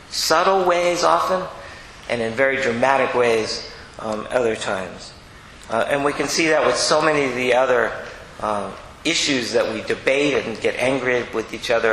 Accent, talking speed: American, 170 wpm